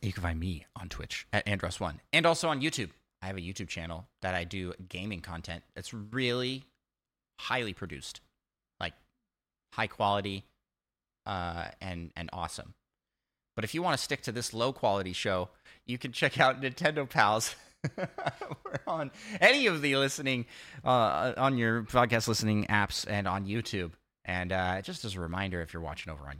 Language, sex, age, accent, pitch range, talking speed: English, male, 30-49, American, 90-125 Hz, 175 wpm